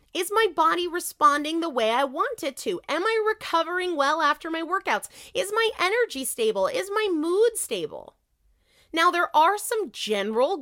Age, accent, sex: 30-49, American, female